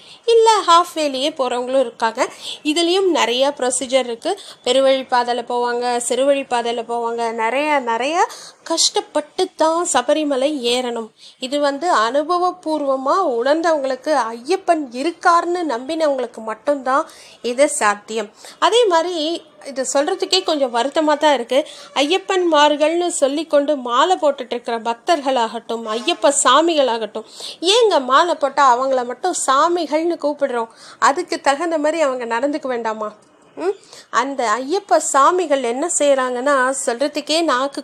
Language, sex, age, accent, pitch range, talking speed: Tamil, female, 30-49, native, 250-320 Hz, 110 wpm